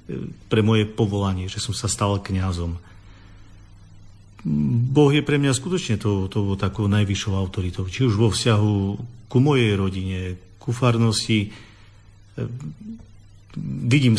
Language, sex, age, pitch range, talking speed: Slovak, male, 50-69, 100-120 Hz, 120 wpm